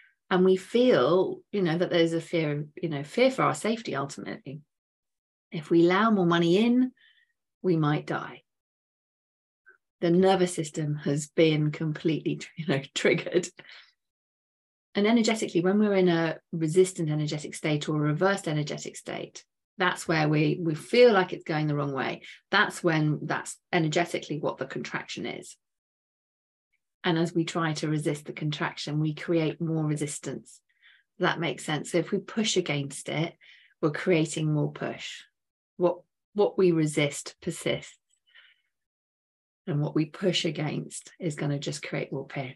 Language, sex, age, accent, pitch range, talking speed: English, female, 30-49, British, 150-185 Hz, 150 wpm